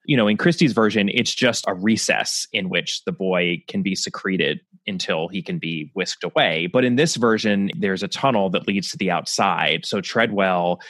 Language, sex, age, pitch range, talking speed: English, male, 20-39, 95-125 Hz, 200 wpm